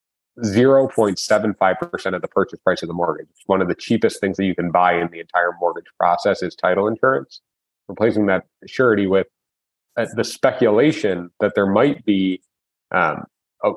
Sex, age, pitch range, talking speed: male, 30-49, 90-110 Hz, 165 wpm